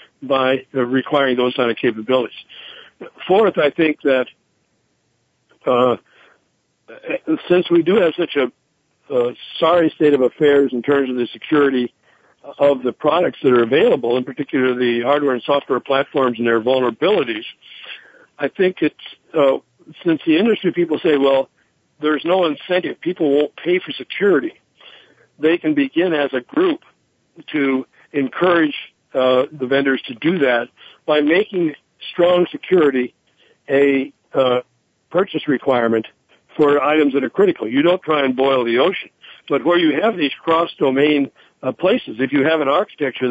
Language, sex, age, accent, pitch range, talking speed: English, male, 60-79, American, 130-165 Hz, 150 wpm